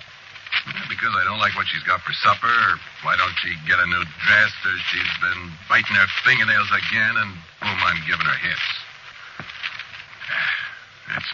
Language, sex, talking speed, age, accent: English, male, 160 wpm, 50-69, American